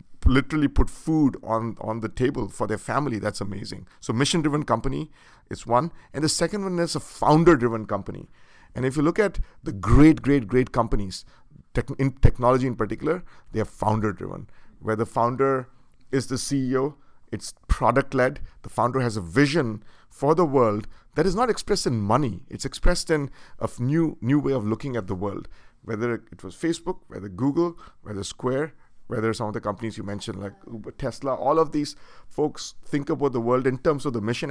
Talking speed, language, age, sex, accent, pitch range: 190 wpm, English, 50-69, male, Indian, 110-145 Hz